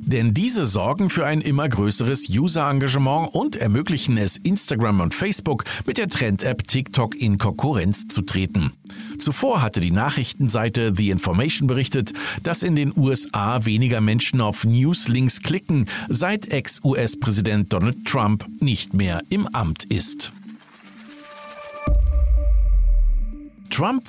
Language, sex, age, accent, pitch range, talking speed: German, male, 50-69, German, 105-160 Hz, 120 wpm